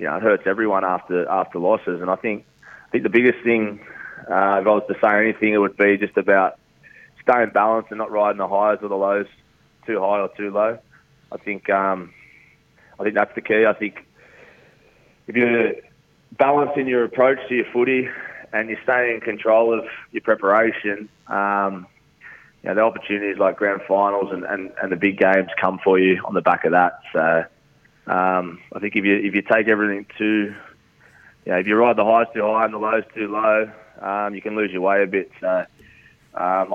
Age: 20-39